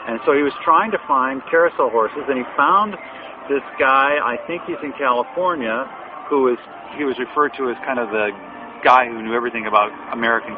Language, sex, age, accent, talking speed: English, male, 50-69, American, 185 wpm